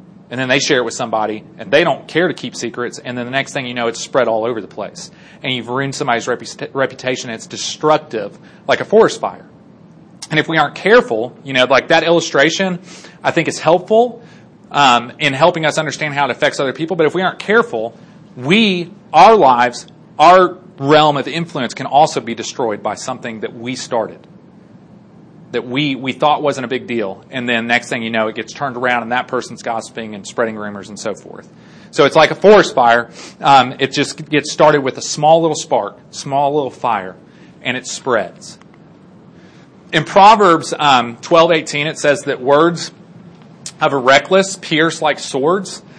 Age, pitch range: 30-49, 130-175 Hz